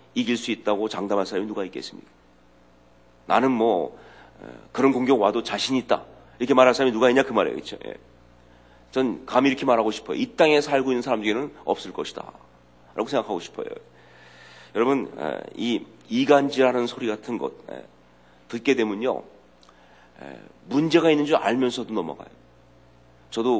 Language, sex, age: Korean, male, 40-59